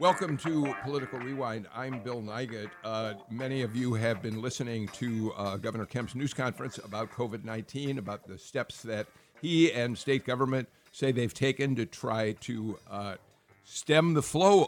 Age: 50-69